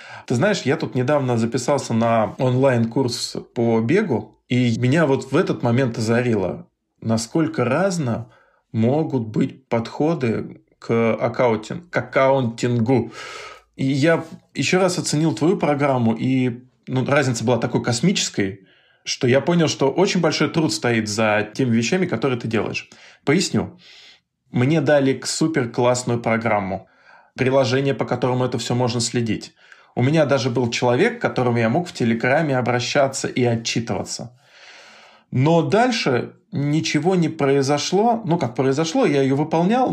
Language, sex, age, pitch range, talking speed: Russian, male, 20-39, 120-155 Hz, 130 wpm